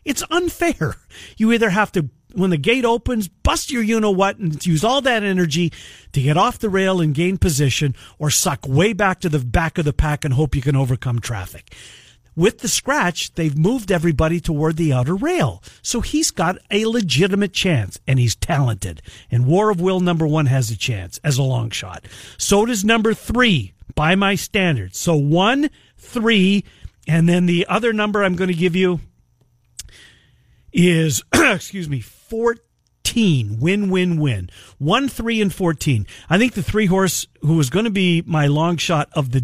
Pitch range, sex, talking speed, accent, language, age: 130-185 Hz, male, 185 wpm, American, English, 50-69